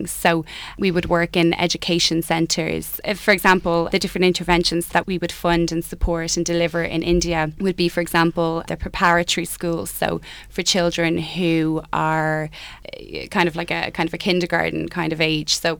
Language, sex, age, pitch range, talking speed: English, female, 20-39, 165-175 Hz, 175 wpm